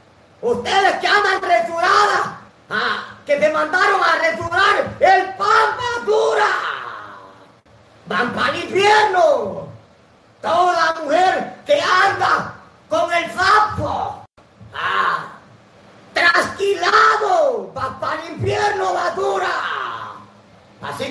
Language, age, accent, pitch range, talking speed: Spanish, 40-59, American, 285-400 Hz, 95 wpm